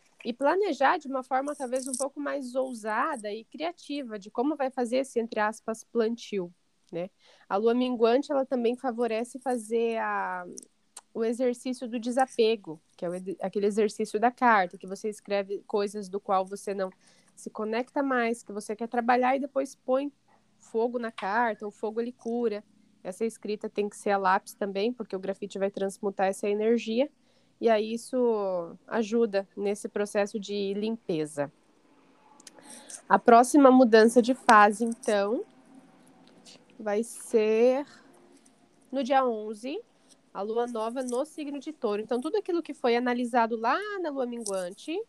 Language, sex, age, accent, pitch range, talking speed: Portuguese, female, 10-29, Brazilian, 210-260 Hz, 150 wpm